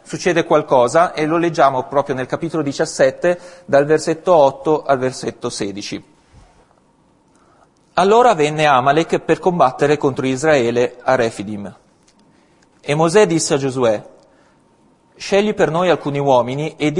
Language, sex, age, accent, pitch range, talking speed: Italian, male, 40-59, native, 120-160 Hz, 125 wpm